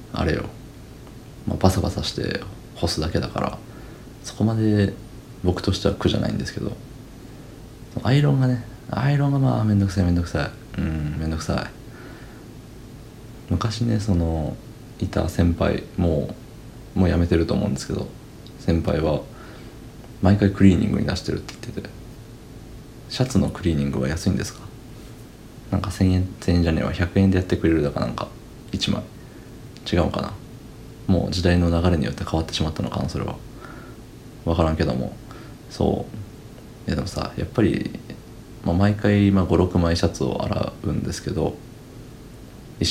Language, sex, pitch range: Japanese, male, 90-120 Hz